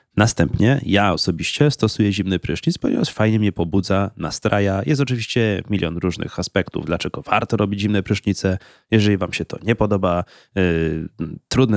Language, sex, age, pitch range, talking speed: Polish, male, 30-49, 90-110 Hz, 150 wpm